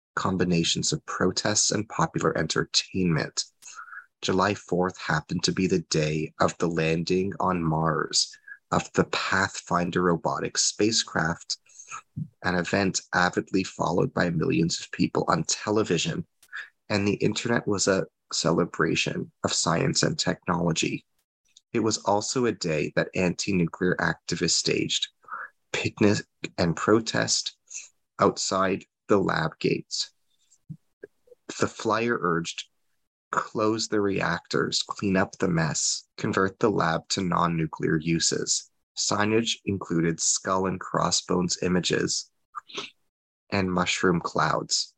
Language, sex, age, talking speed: English, male, 30-49, 110 wpm